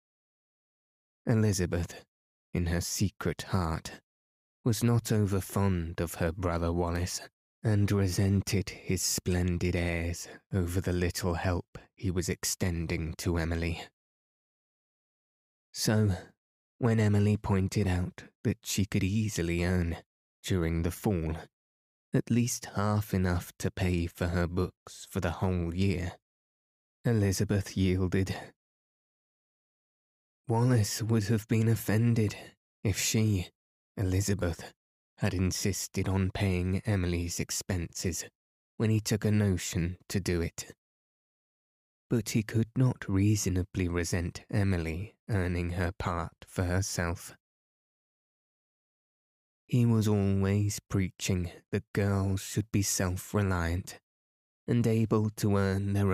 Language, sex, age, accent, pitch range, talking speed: English, male, 20-39, British, 85-105 Hz, 110 wpm